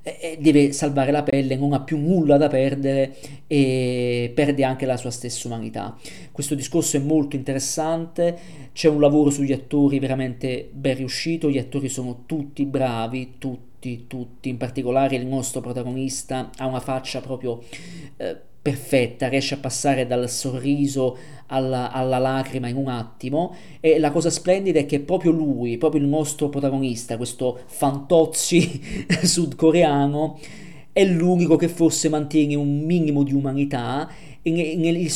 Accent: native